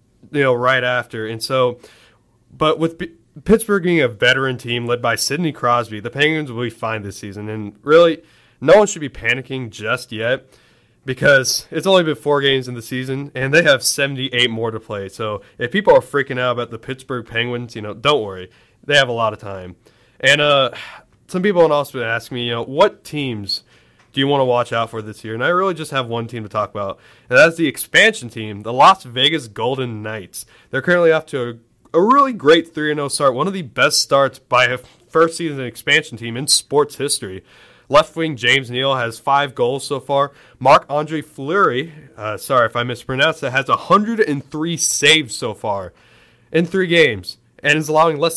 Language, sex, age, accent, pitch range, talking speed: English, male, 20-39, American, 115-155 Hz, 205 wpm